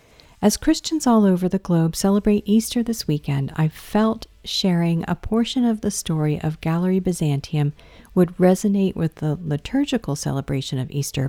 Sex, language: female, English